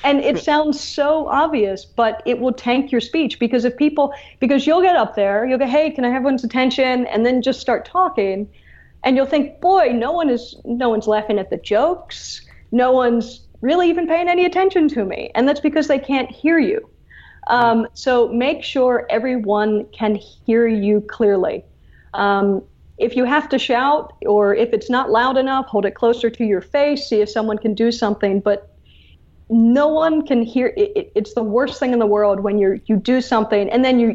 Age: 40-59